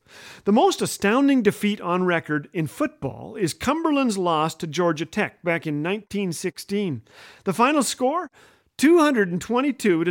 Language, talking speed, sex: English, 130 wpm, male